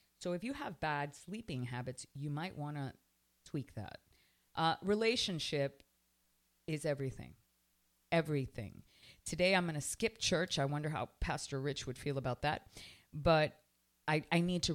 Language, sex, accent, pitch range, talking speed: English, female, American, 120-160 Hz, 155 wpm